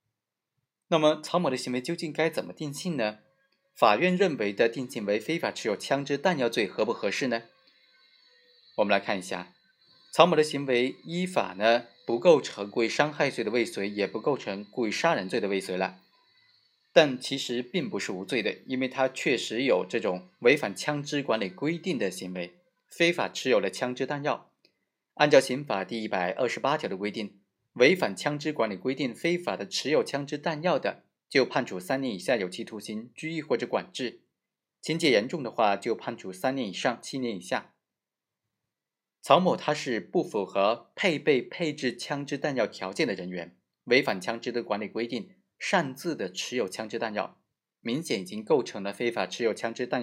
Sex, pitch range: male, 110-160 Hz